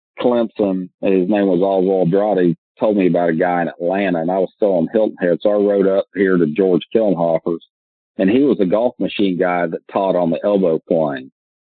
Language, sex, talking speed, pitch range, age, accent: English, male, 215 wpm, 85-100 Hz, 40-59, American